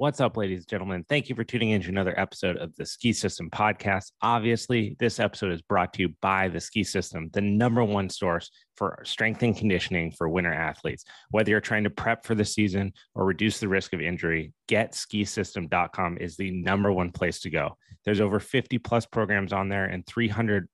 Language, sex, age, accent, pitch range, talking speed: English, male, 30-49, American, 90-115 Hz, 205 wpm